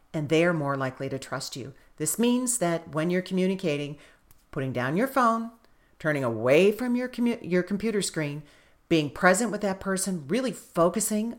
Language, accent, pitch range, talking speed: English, American, 155-195 Hz, 175 wpm